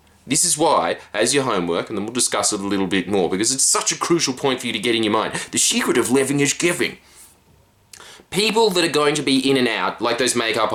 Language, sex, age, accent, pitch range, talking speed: English, male, 20-39, Australian, 105-165 Hz, 255 wpm